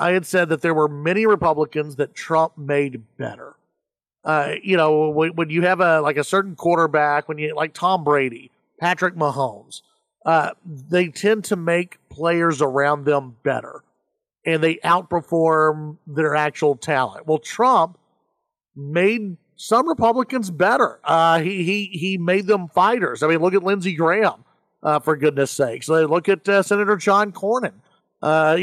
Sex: male